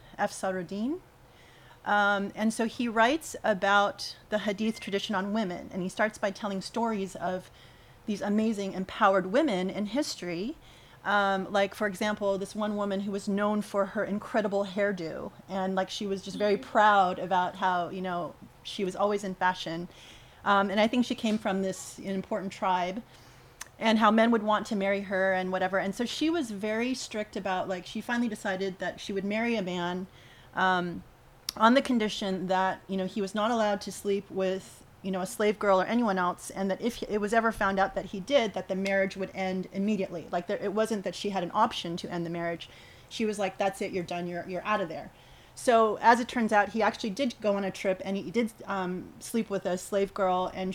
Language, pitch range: English, 185-215 Hz